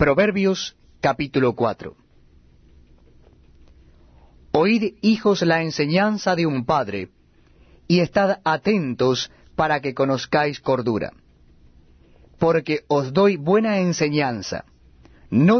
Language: Spanish